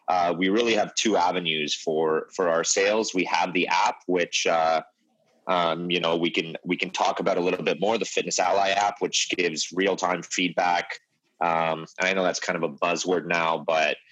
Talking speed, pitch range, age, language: 205 wpm, 80-90 Hz, 30-49, English